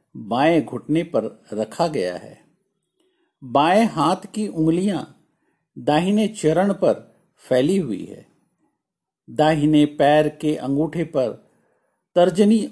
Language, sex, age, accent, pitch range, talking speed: Hindi, male, 50-69, native, 140-215 Hz, 105 wpm